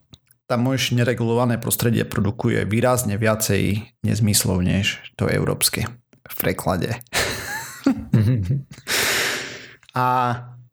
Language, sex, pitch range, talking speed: Slovak, male, 100-125 Hz, 75 wpm